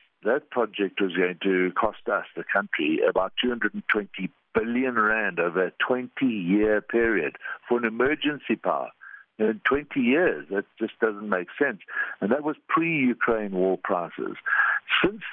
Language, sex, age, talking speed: English, male, 60-79, 140 wpm